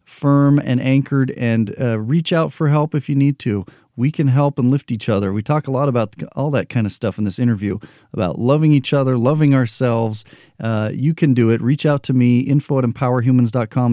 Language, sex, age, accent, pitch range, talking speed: English, male, 40-59, American, 110-140 Hz, 220 wpm